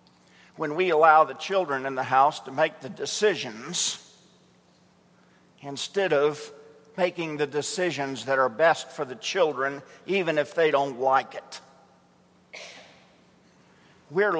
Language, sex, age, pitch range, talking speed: English, male, 50-69, 140-185 Hz, 125 wpm